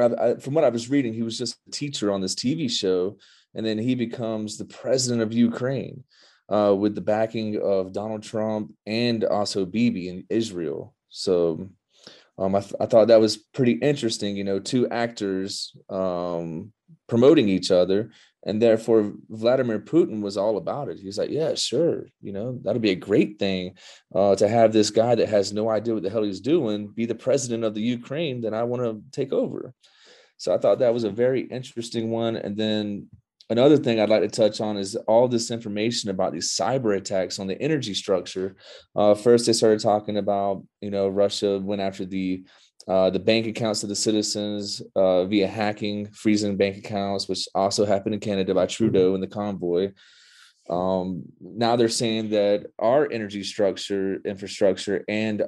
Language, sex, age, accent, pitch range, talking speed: English, male, 30-49, American, 100-115 Hz, 190 wpm